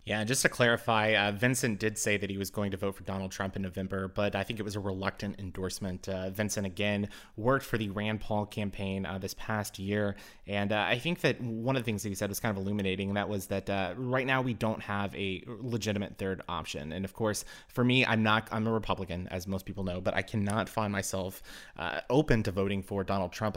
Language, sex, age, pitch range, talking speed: English, male, 20-39, 100-115 Hz, 245 wpm